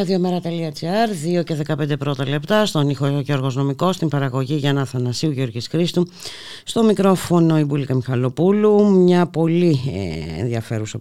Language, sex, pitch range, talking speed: Greek, female, 100-155 Hz, 135 wpm